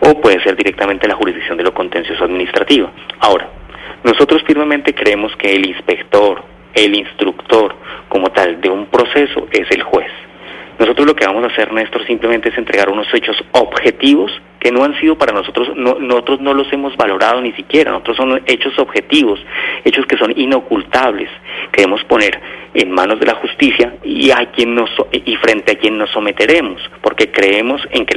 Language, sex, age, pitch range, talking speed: Spanish, male, 30-49, 150-205 Hz, 175 wpm